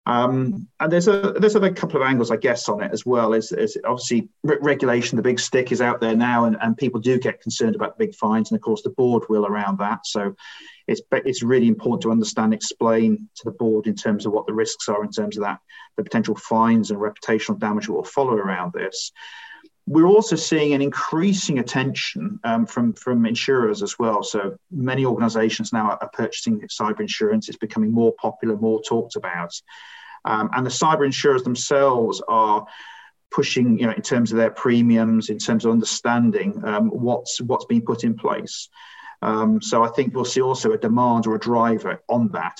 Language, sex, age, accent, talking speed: English, male, 40-59, British, 195 wpm